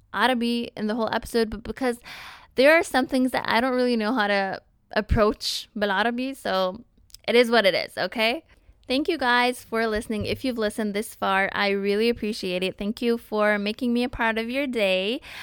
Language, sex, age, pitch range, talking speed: English, female, 20-39, 190-235 Hz, 195 wpm